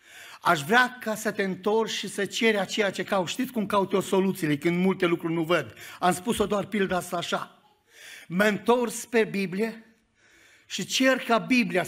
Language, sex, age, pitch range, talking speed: Romanian, male, 50-69, 190-245 Hz, 180 wpm